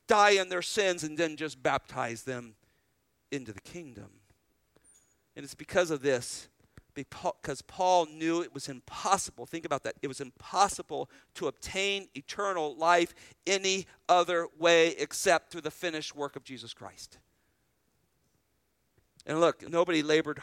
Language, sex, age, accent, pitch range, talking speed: English, male, 50-69, American, 140-185 Hz, 140 wpm